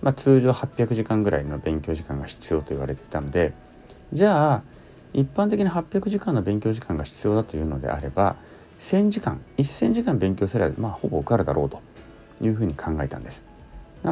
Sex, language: male, Japanese